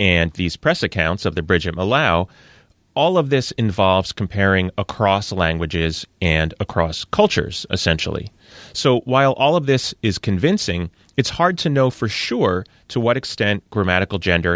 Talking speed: 155 wpm